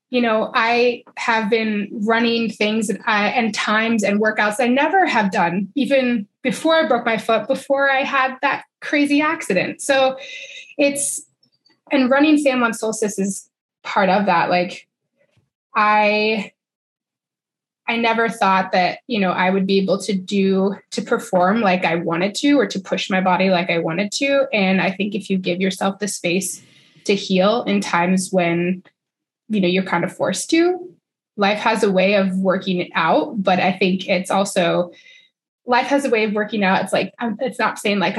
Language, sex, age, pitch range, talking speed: English, female, 20-39, 190-240 Hz, 180 wpm